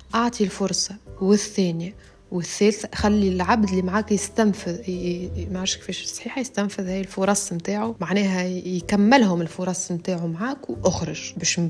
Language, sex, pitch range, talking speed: Arabic, female, 175-220 Hz, 130 wpm